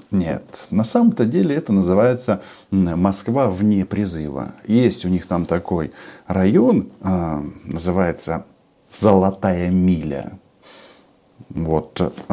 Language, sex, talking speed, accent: Russian, male, 90 wpm, native